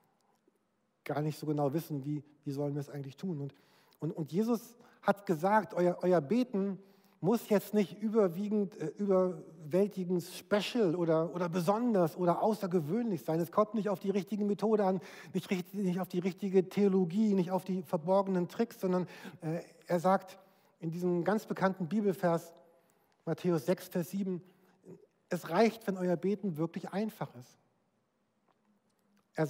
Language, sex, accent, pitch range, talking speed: German, male, German, 160-200 Hz, 155 wpm